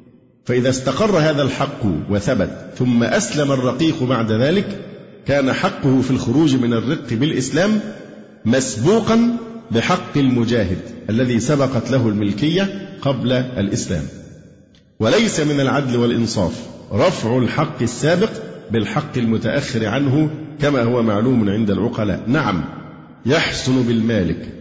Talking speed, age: 105 wpm, 50-69